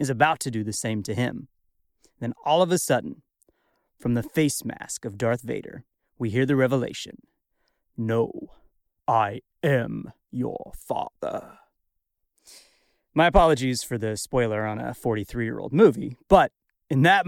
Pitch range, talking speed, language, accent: 120-155 Hz, 140 wpm, English, American